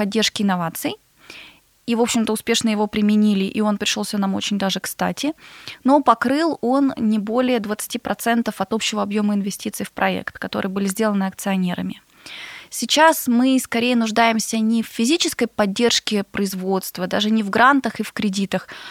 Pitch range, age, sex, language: 205-245 Hz, 20-39, female, Russian